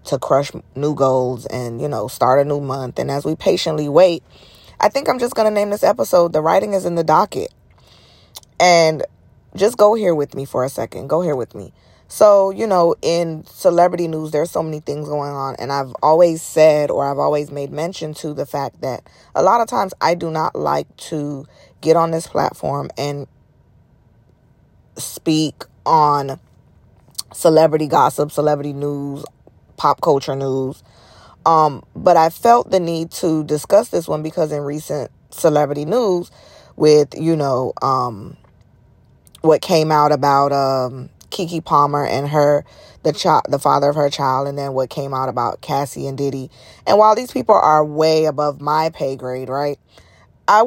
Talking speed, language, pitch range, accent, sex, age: 175 wpm, English, 140-165 Hz, American, female, 20-39